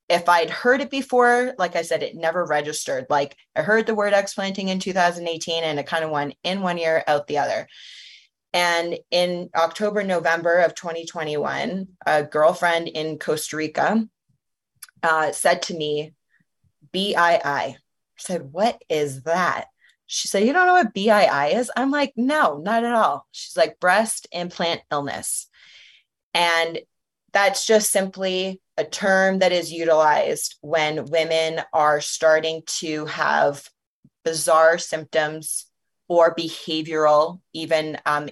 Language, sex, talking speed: English, female, 140 wpm